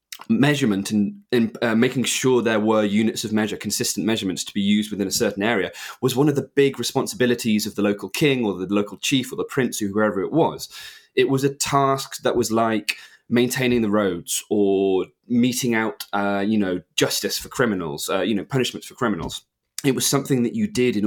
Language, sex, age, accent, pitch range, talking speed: English, male, 20-39, British, 105-125 Hz, 210 wpm